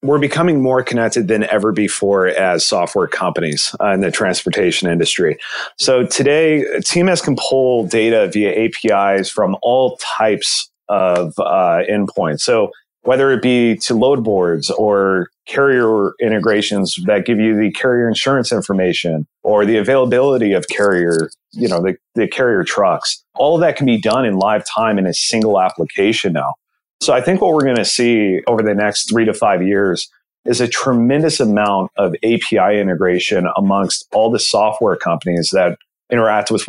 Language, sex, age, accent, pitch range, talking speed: English, male, 30-49, American, 100-125 Hz, 165 wpm